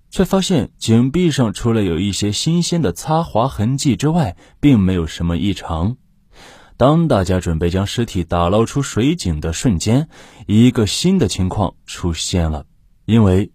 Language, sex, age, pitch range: Chinese, male, 20-39, 95-145 Hz